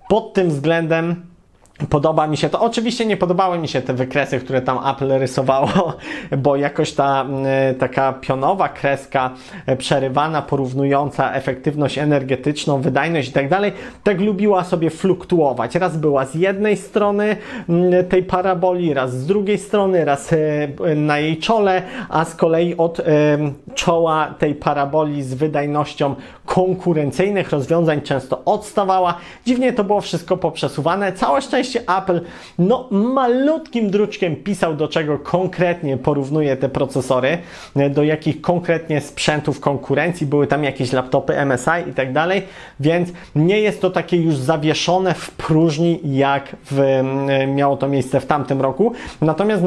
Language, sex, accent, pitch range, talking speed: Polish, male, native, 140-185 Hz, 135 wpm